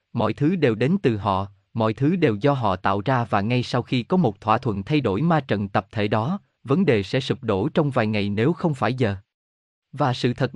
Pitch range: 110-155 Hz